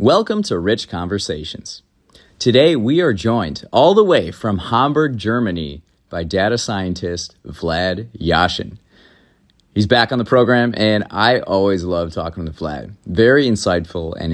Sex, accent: male, American